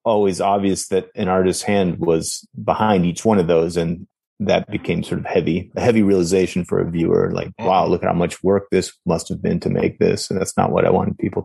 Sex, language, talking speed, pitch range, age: male, English, 235 wpm, 90-110 Hz, 30-49